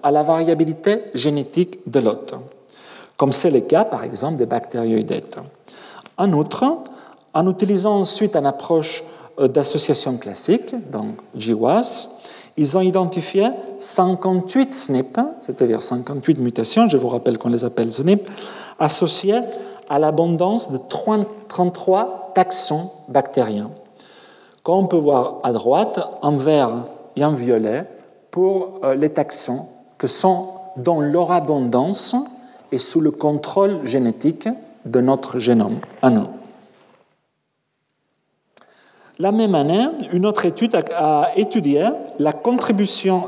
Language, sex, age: French, male, 50-69